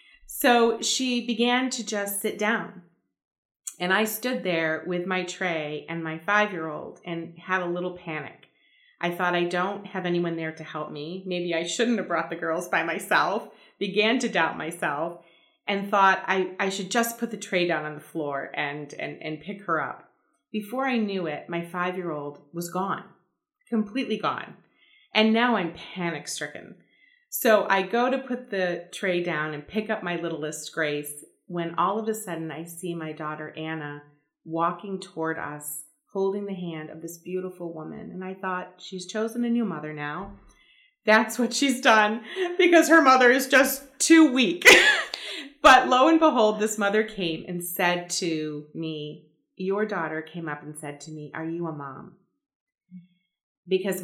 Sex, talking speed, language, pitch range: female, 175 wpm, English, 165-220 Hz